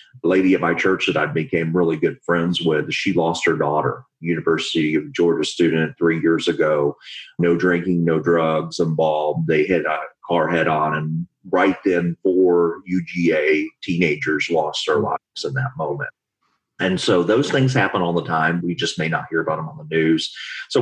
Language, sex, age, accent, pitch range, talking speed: English, male, 40-59, American, 80-95 Hz, 185 wpm